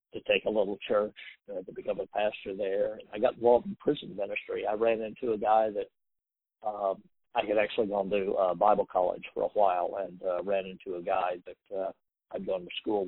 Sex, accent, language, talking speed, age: male, American, English, 215 wpm, 50-69